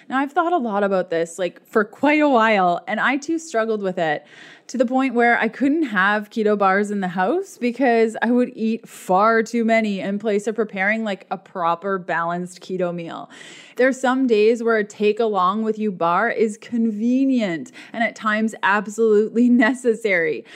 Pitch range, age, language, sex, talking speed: 195-245 Hz, 20-39, English, female, 190 wpm